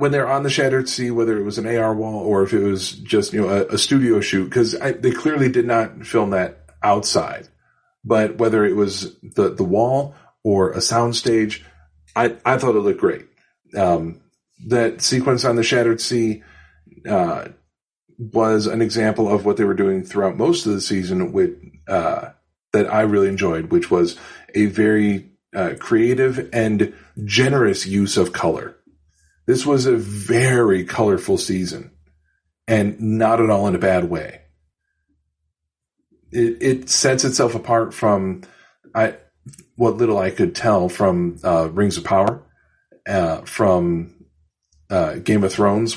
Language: English